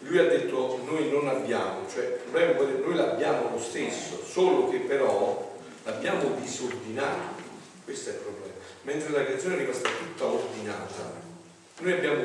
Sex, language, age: male, Italian, 40-59